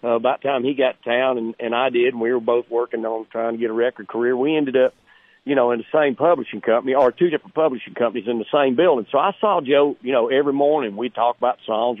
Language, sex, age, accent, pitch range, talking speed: English, male, 50-69, American, 115-160 Hz, 275 wpm